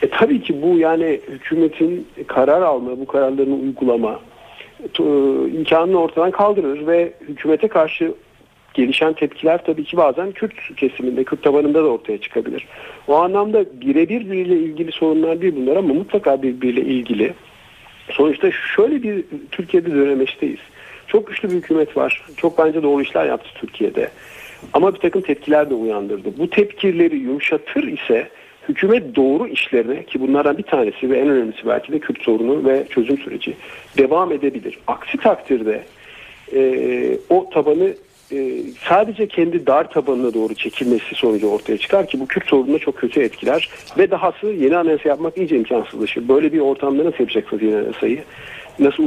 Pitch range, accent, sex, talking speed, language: 140-225 Hz, native, male, 150 wpm, Turkish